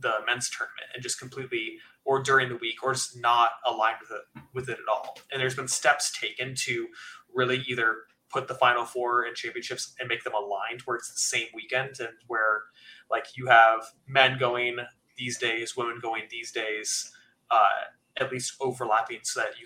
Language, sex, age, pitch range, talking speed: English, male, 20-39, 115-135 Hz, 190 wpm